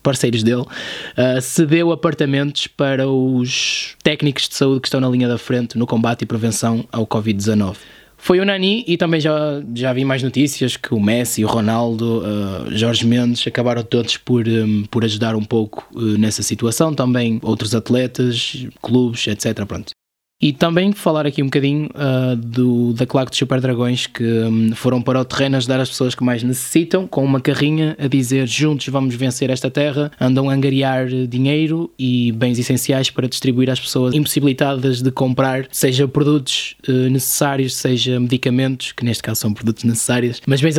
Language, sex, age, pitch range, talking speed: Portuguese, male, 20-39, 120-140 Hz, 175 wpm